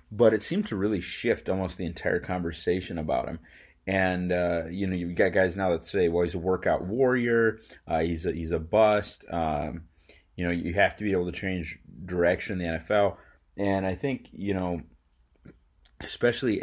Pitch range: 80-95 Hz